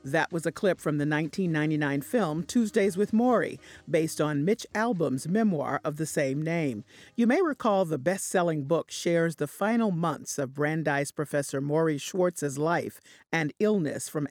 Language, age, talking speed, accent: English, 50-69, 165 wpm, American